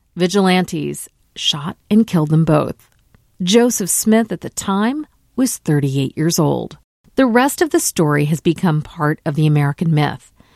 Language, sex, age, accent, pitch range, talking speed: English, female, 50-69, American, 155-220 Hz, 155 wpm